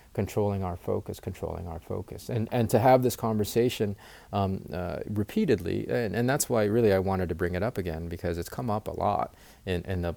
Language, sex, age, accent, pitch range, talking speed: English, male, 30-49, American, 90-110 Hz, 210 wpm